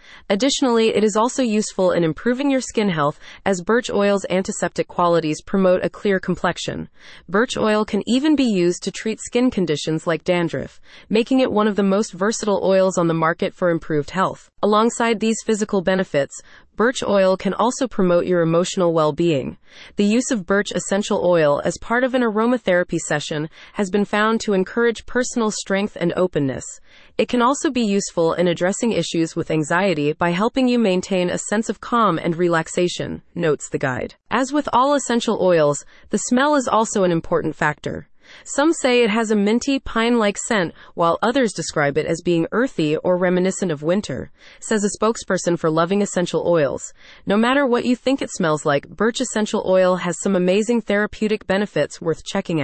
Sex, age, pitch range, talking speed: female, 30-49, 170-225 Hz, 180 wpm